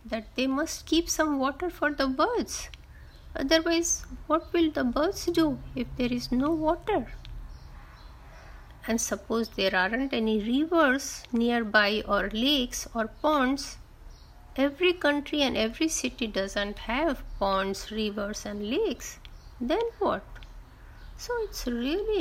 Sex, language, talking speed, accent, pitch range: female, Hindi, 125 wpm, native, 220-305 Hz